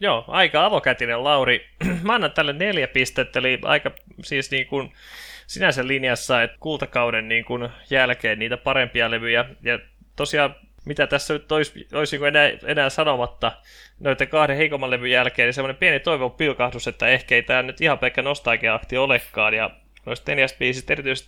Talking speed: 160 wpm